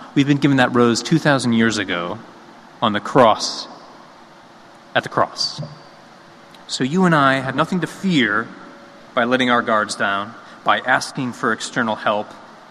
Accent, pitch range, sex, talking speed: American, 110-135 Hz, male, 150 wpm